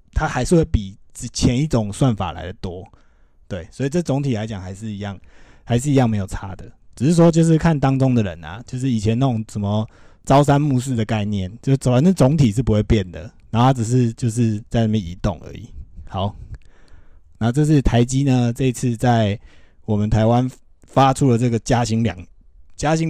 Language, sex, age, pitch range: Chinese, male, 20-39, 100-135 Hz